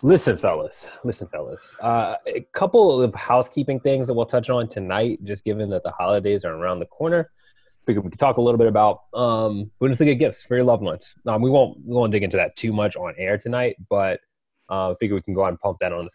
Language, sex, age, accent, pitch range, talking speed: English, male, 20-39, American, 95-125 Hz, 240 wpm